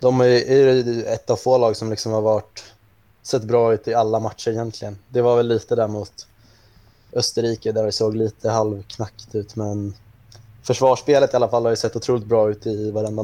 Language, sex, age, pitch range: Swedish, male, 20-39, 110-125 Hz